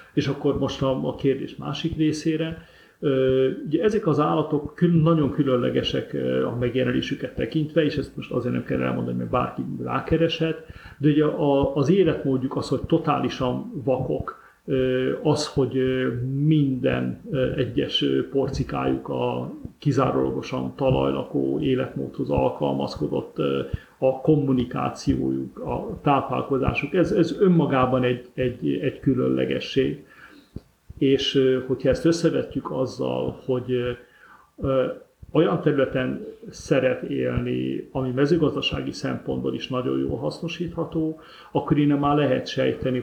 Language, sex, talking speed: Hungarian, male, 105 wpm